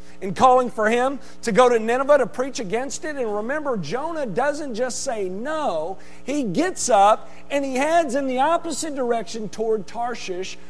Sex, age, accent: male, 50-69, American